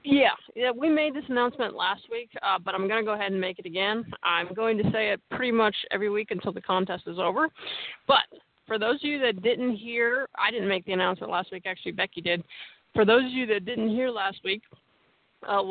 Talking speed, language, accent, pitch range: 235 wpm, English, American, 195-235 Hz